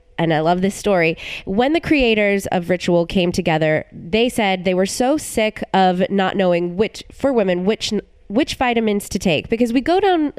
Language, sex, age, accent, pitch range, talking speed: English, female, 20-39, American, 175-235 Hz, 190 wpm